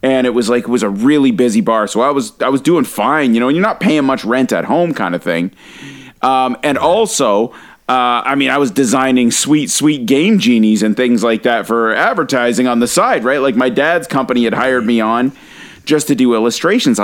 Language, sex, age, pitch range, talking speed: English, male, 30-49, 120-160 Hz, 230 wpm